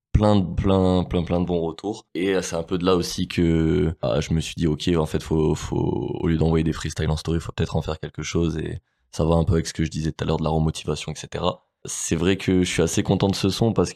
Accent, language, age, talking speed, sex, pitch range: French, French, 20-39, 290 wpm, male, 80-95 Hz